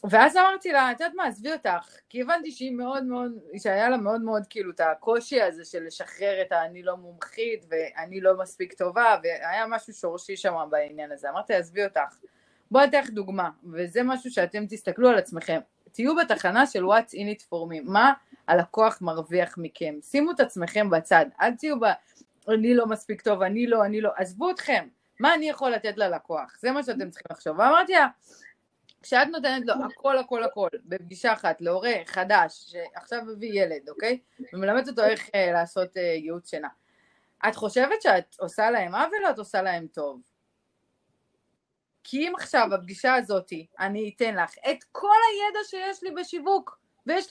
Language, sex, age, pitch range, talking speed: Hebrew, female, 30-49, 190-310 Hz, 170 wpm